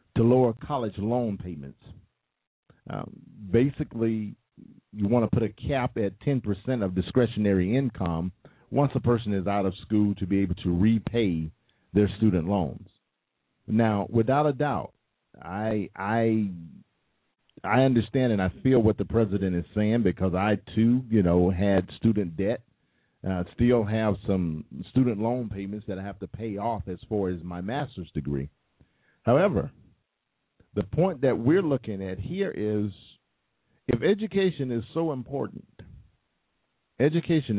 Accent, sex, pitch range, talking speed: American, male, 100-130 Hz, 150 wpm